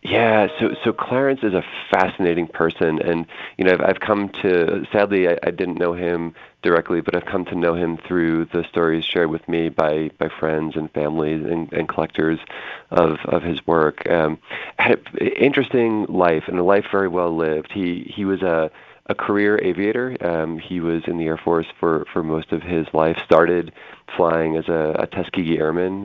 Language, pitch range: English, 80-90 Hz